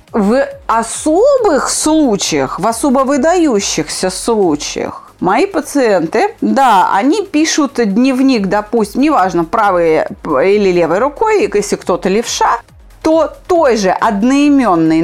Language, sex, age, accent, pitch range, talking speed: Russian, female, 30-49, native, 195-290 Hz, 105 wpm